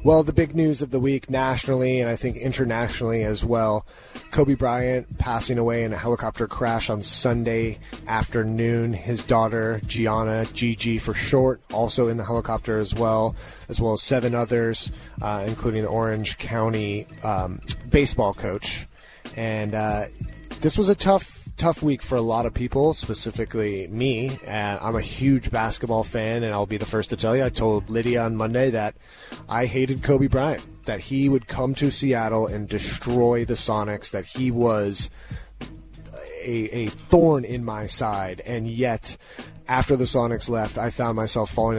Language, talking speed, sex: English, 170 wpm, male